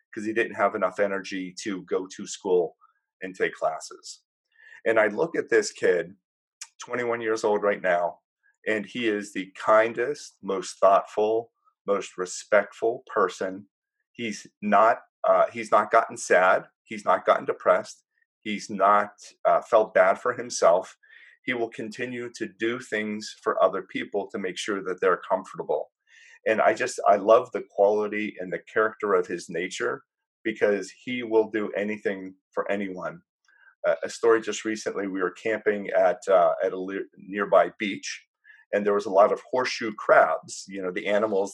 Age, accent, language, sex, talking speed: 30-49, American, English, male, 165 wpm